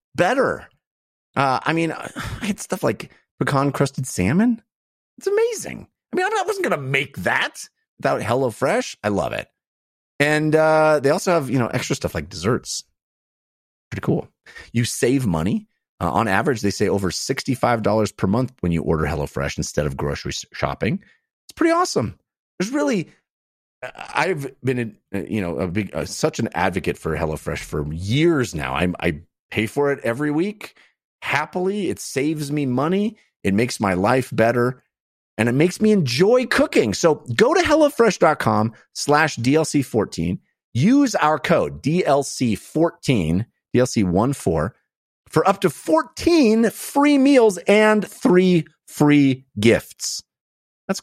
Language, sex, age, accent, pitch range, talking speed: English, male, 30-49, American, 115-190 Hz, 150 wpm